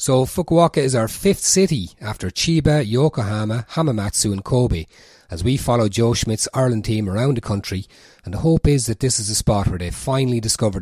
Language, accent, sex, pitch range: English, Irish, male, 95-120 Hz